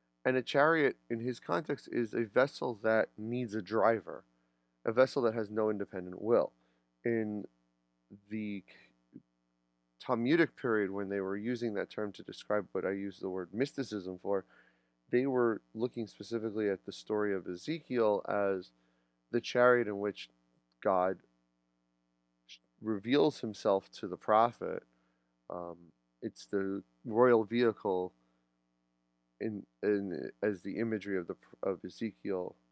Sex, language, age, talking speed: male, English, 30-49, 135 wpm